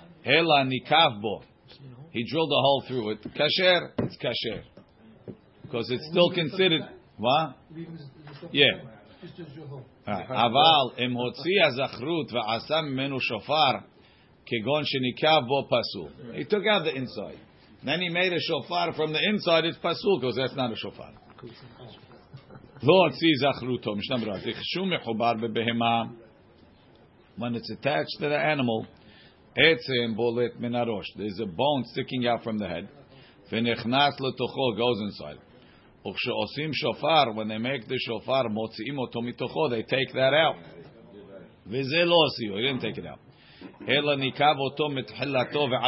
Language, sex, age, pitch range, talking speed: English, male, 50-69, 115-145 Hz, 90 wpm